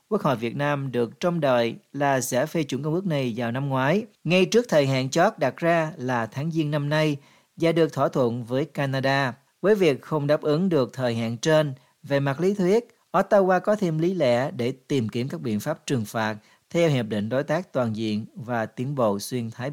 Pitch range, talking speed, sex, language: 125-155 Hz, 220 wpm, male, Vietnamese